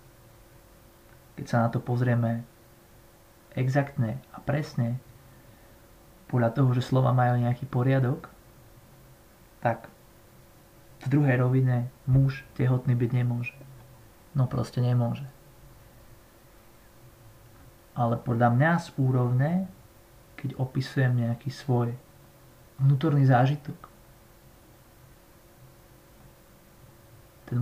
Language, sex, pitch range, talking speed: Slovak, male, 115-135 Hz, 80 wpm